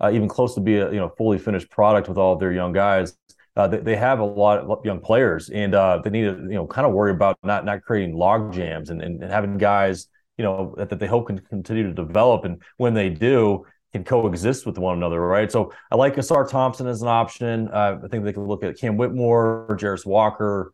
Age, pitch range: 30-49, 95-110 Hz